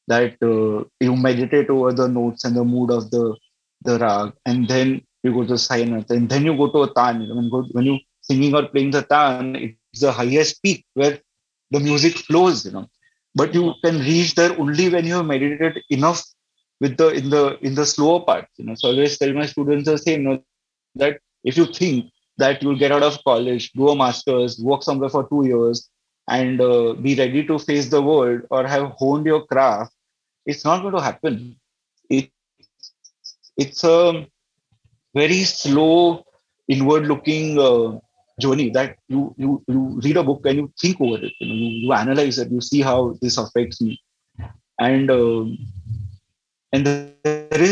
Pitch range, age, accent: 120-150 Hz, 20-39, Indian